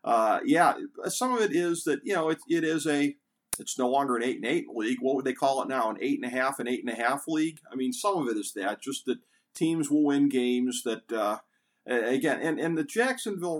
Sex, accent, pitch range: male, American, 125-160 Hz